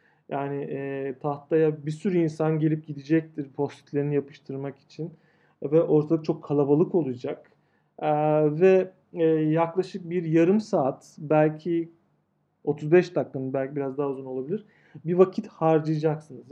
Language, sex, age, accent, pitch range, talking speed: Turkish, male, 40-59, native, 150-190 Hz, 125 wpm